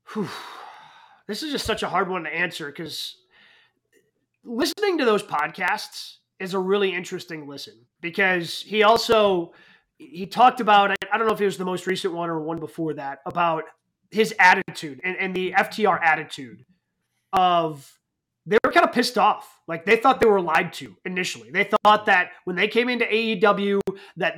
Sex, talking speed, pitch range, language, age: male, 175 wpm, 180-220 Hz, English, 30-49